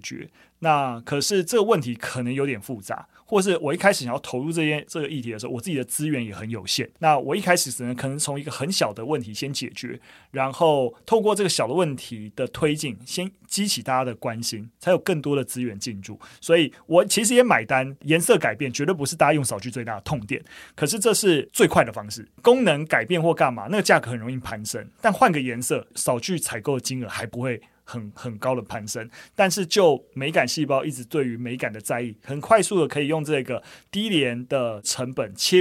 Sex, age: male, 30-49